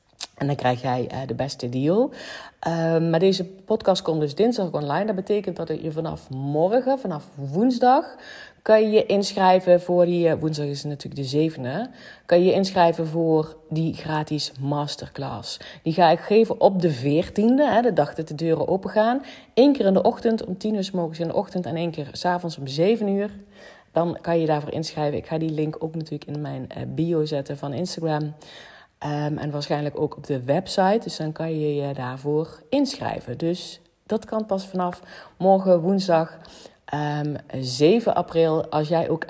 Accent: Dutch